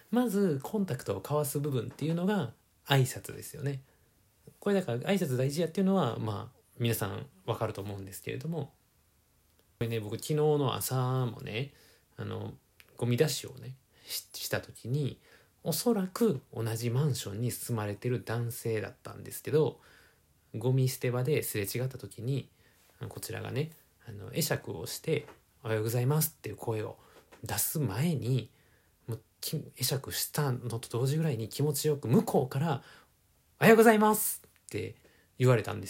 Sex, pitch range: male, 110-150 Hz